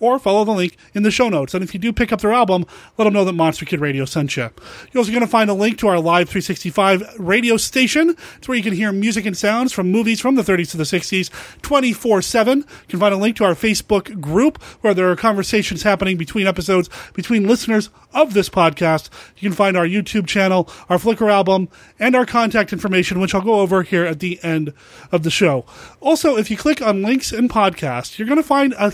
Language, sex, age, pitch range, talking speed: English, male, 30-49, 175-225 Hz, 235 wpm